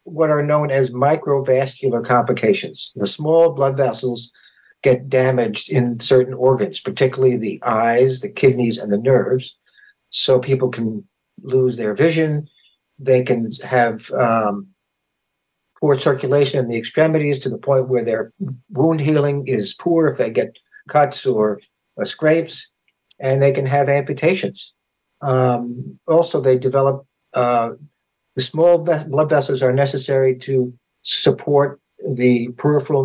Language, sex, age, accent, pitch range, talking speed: English, male, 60-79, American, 125-145 Hz, 135 wpm